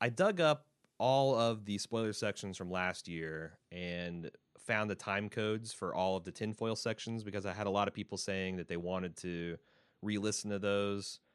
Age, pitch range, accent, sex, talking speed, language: 30-49, 90-110 Hz, American, male, 195 wpm, English